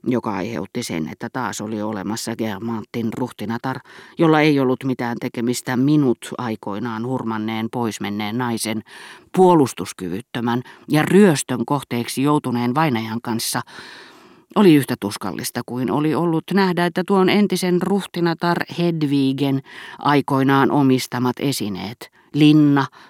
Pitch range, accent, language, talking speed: 120-160 Hz, native, Finnish, 110 wpm